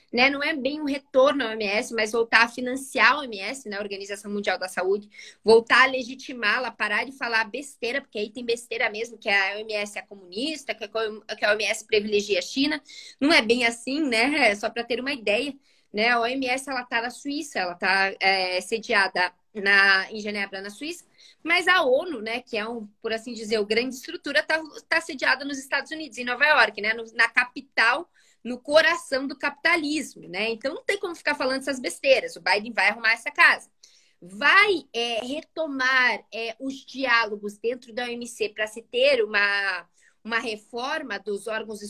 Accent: Brazilian